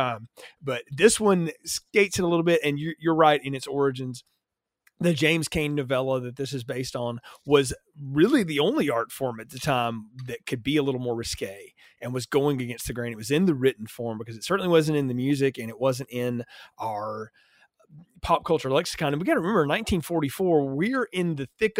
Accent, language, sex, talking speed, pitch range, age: American, English, male, 215 wpm, 125-155 Hz, 30-49